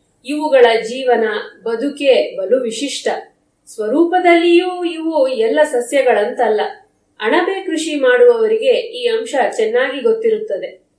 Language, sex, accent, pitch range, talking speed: Kannada, female, native, 265-450 Hz, 85 wpm